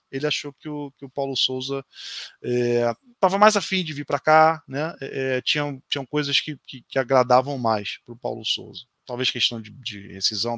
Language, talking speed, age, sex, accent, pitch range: Portuguese, 200 wpm, 20-39, male, Brazilian, 120-150 Hz